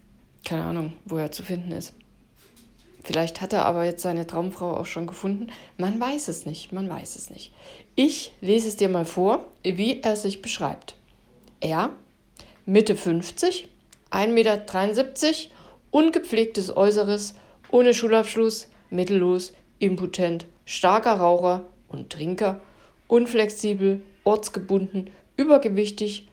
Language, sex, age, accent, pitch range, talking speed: German, female, 60-79, German, 180-220 Hz, 125 wpm